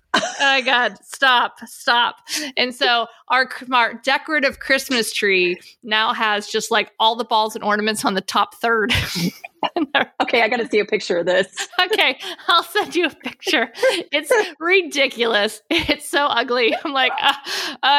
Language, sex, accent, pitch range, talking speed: English, female, American, 195-255 Hz, 160 wpm